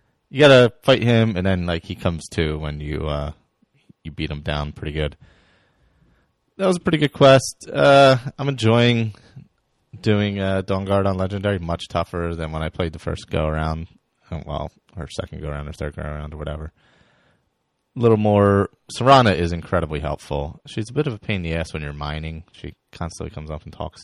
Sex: male